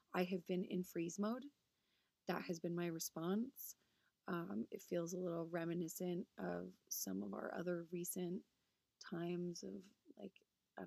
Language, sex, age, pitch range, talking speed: English, female, 20-39, 170-195 Hz, 150 wpm